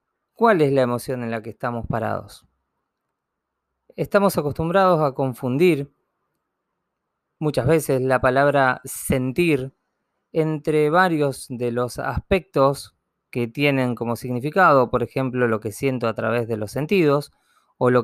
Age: 20-39